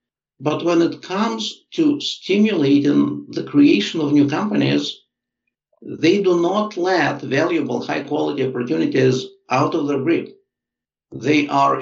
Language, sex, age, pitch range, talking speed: English, male, 50-69, 130-210 Hz, 120 wpm